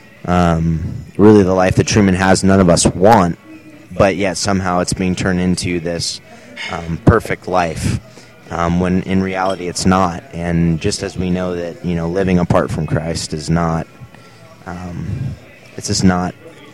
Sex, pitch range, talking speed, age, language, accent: male, 85-95 Hz, 165 wpm, 20-39, English, American